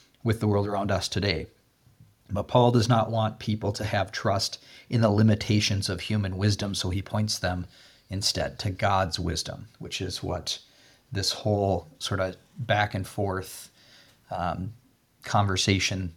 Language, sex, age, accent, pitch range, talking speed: English, male, 30-49, American, 95-110 Hz, 150 wpm